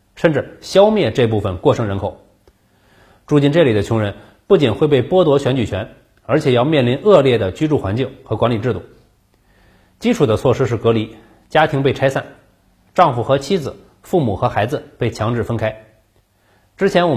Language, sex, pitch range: Chinese, male, 105-145 Hz